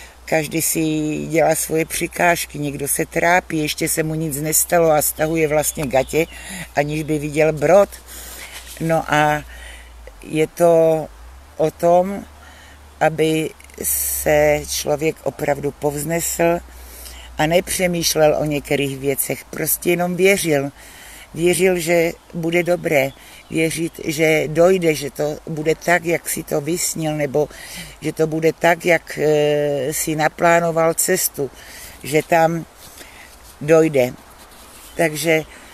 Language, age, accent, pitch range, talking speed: Czech, 60-79, native, 145-165 Hz, 115 wpm